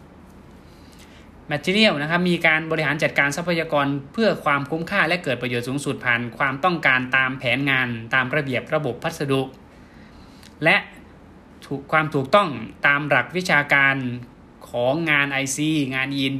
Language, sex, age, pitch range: Thai, male, 20-39, 135-160 Hz